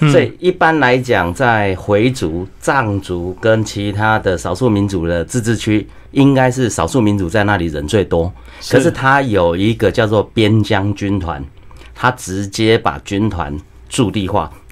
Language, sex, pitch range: Chinese, male, 90-120 Hz